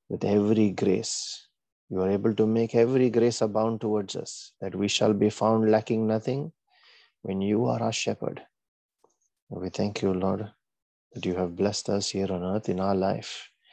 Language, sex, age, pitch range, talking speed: English, male, 30-49, 95-110 Hz, 175 wpm